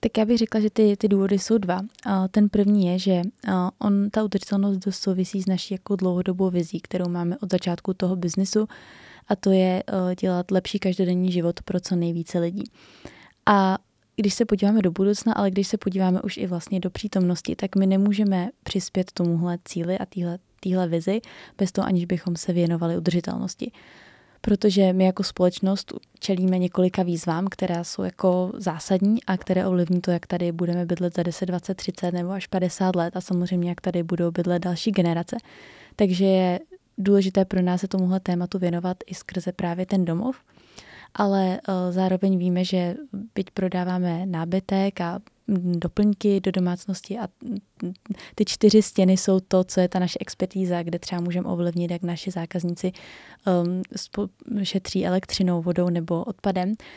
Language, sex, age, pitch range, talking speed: Slovak, female, 20-39, 180-200 Hz, 165 wpm